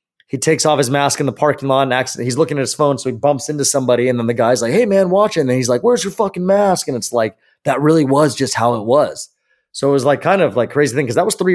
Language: English